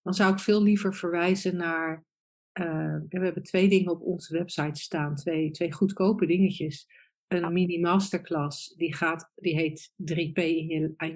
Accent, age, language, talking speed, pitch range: Dutch, 50-69, Dutch, 150 wpm, 160-195 Hz